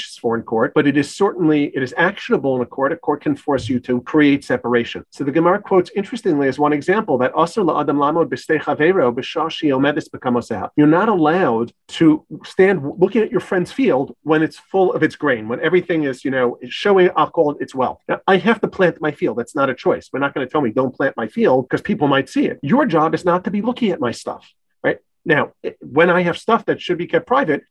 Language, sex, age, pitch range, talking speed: English, male, 40-59, 145-190 Hz, 225 wpm